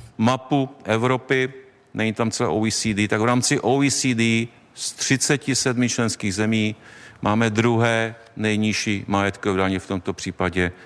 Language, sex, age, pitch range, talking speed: Czech, male, 50-69, 105-130 Hz, 120 wpm